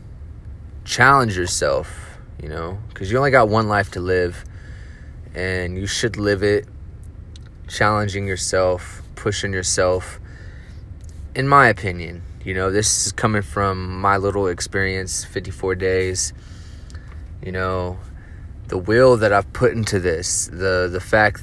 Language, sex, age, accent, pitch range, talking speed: English, male, 20-39, American, 90-100 Hz, 130 wpm